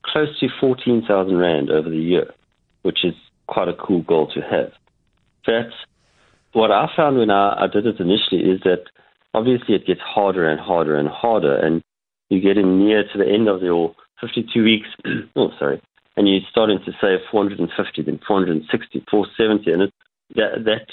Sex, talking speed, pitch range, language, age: male, 180 wpm, 95-115 Hz, English, 40-59